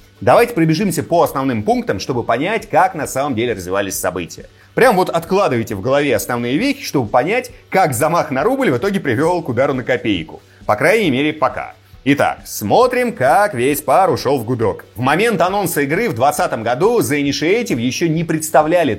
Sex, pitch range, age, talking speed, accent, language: male, 130-200 Hz, 30-49, 180 wpm, native, Russian